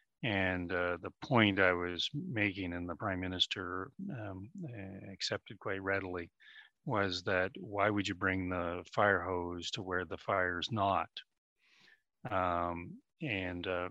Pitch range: 90-105 Hz